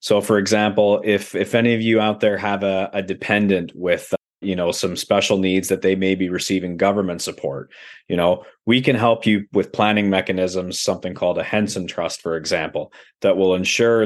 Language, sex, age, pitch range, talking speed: English, male, 30-49, 95-105 Hz, 200 wpm